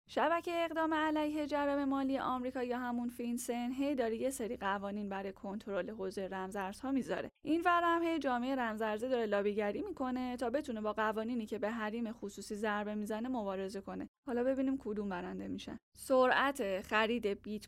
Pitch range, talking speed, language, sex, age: 220-290 Hz, 160 wpm, Persian, female, 10-29